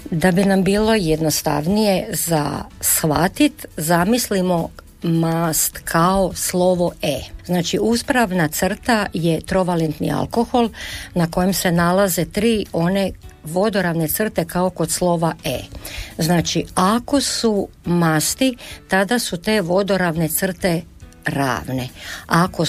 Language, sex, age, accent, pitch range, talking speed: Croatian, female, 50-69, native, 165-215 Hz, 110 wpm